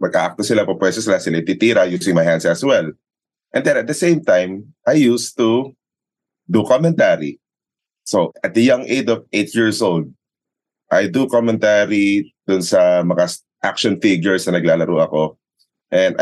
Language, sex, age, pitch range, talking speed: English, male, 20-39, 90-130 Hz, 160 wpm